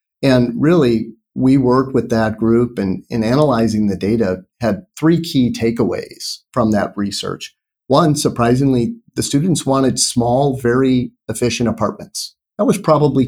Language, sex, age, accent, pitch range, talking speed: English, male, 40-59, American, 110-130 Hz, 140 wpm